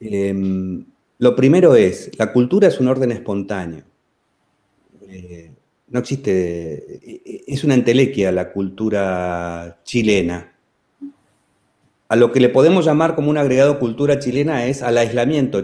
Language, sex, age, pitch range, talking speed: Spanish, male, 40-59, 95-135 Hz, 125 wpm